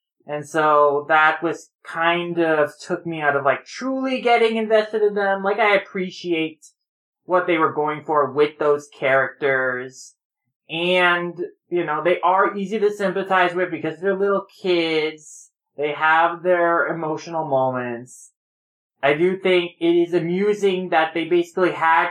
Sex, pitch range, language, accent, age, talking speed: male, 150-185 Hz, English, American, 20-39, 150 wpm